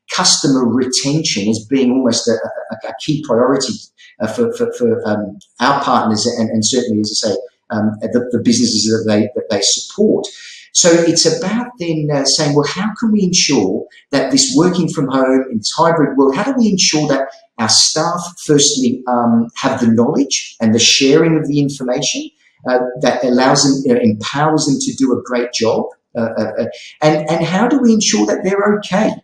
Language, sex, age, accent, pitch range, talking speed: English, male, 40-59, British, 125-175 Hz, 195 wpm